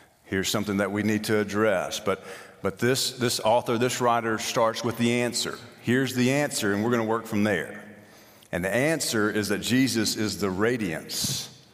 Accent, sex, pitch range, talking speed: American, male, 95-115 Hz, 190 wpm